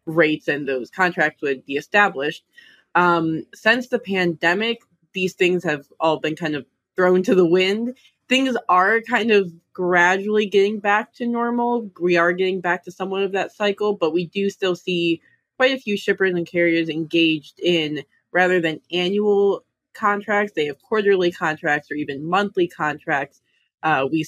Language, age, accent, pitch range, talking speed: English, 20-39, American, 155-195 Hz, 165 wpm